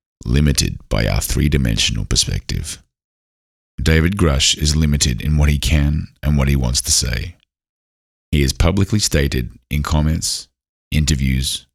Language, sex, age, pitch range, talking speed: English, male, 30-49, 65-80 Hz, 135 wpm